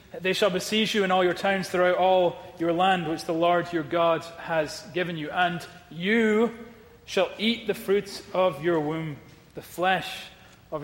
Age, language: 30-49, English